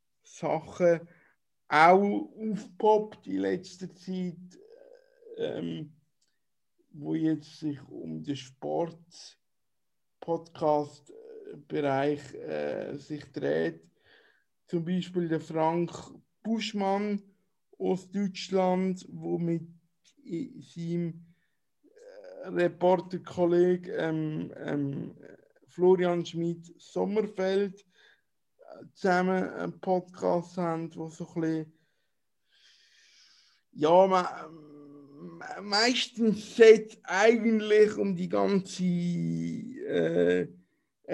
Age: 60-79